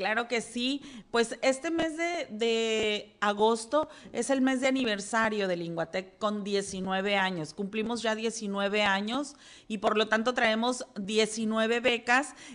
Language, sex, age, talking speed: Spanish, female, 40-59, 145 wpm